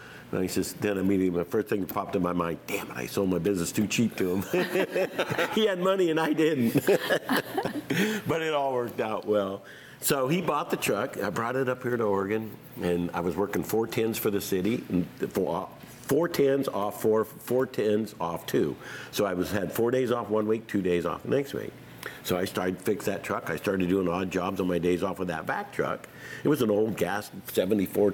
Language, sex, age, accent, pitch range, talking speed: English, male, 50-69, American, 90-115 Hz, 230 wpm